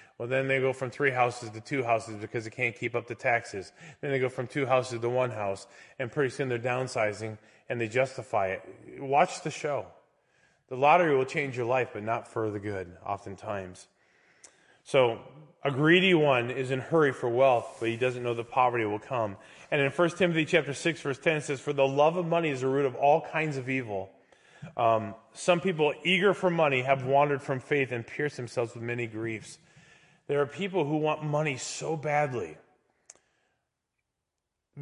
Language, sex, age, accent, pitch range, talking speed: English, male, 20-39, American, 120-150 Hz, 200 wpm